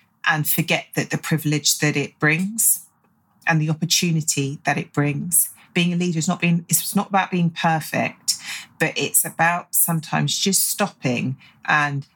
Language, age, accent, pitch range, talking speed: English, 40-59, British, 145-170 Hz, 155 wpm